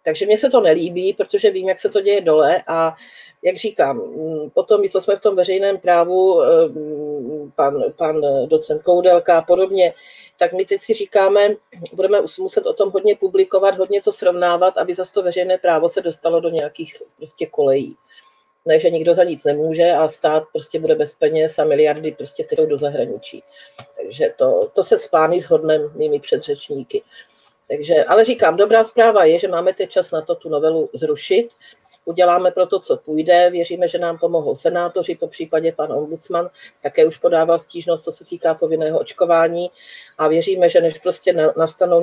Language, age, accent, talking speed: Czech, 40-59, native, 175 wpm